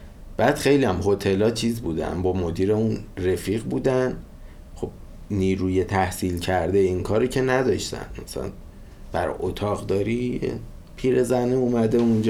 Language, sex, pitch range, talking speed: Persian, male, 90-110 Hz, 115 wpm